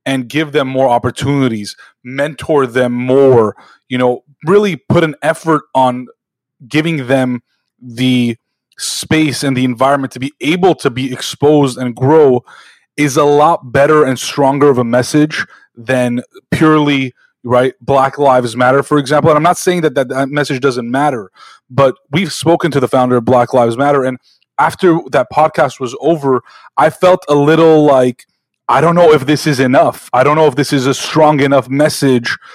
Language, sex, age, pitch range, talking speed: English, male, 20-39, 130-160 Hz, 175 wpm